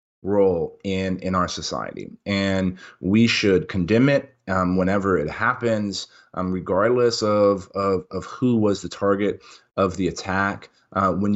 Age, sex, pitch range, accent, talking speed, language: 30-49, male, 90-110 Hz, American, 150 wpm, English